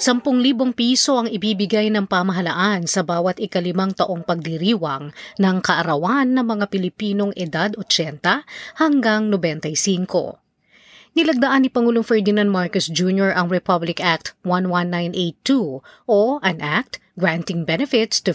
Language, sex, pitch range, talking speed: Filipino, female, 180-235 Hz, 120 wpm